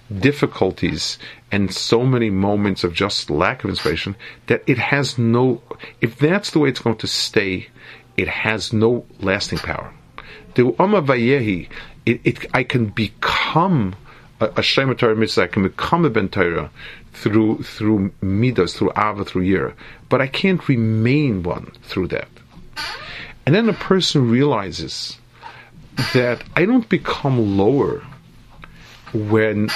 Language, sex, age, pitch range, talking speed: English, male, 40-59, 110-145 Hz, 130 wpm